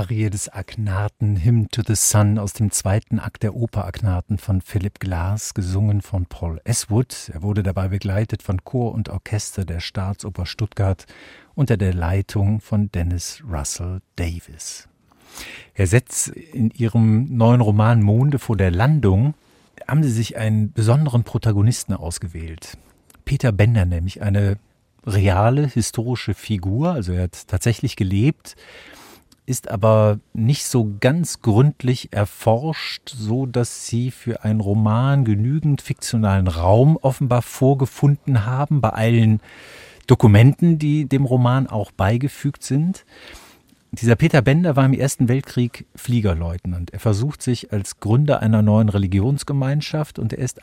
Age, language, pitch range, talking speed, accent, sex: 50-69, German, 100-125 Hz, 135 wpm, German, male